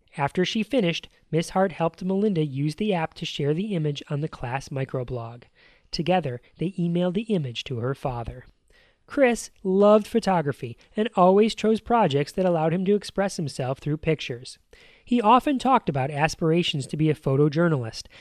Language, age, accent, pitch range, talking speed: English, 30-49, American, 145-200 Hz, 165 wpm